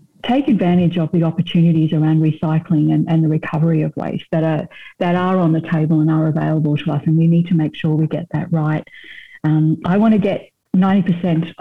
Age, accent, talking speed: 50-69, Australian, 210 wpm